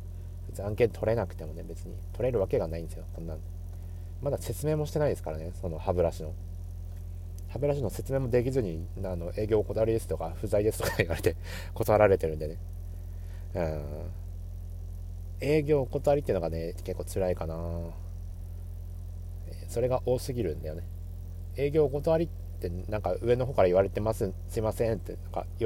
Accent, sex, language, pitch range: native, male, Japanese, 85-115 Hz